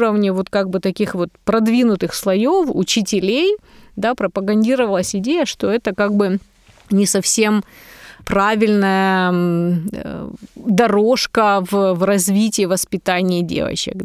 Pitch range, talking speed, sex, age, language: 185-225 Hz, 105 wpm, female, 20-39, Ukrainian